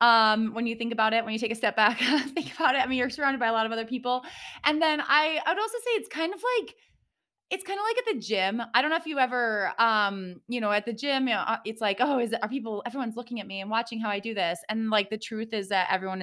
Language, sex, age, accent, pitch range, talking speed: English, female, 20-39, American, 195-280 Hz, 295 wpm